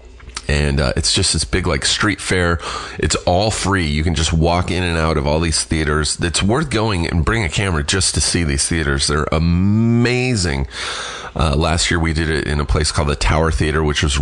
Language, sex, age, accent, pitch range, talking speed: English, male, 30-49, American, 70-90 Hz, 220 wpm